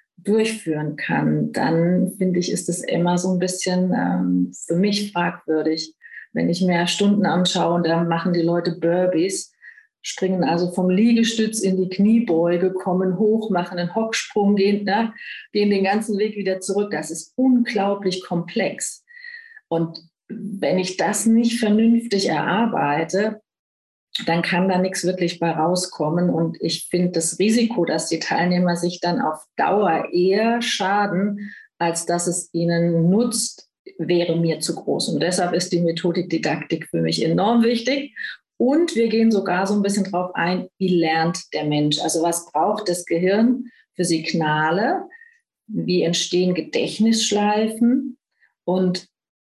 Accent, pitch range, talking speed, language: German, 170-215 Hz, 145 wpm, German